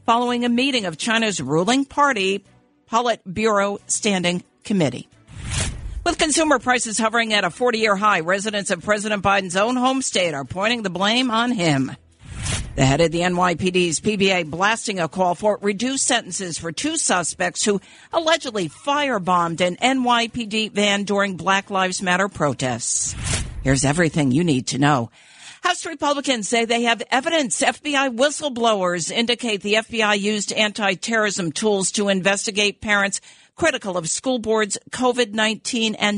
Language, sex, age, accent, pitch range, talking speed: English, female, 50-69, American, 175-240 Hz, 145 wpm